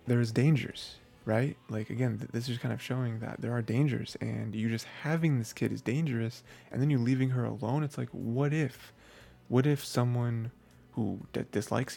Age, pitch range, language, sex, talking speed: 20-39, 110-135 Hz, English, male, 200 wpm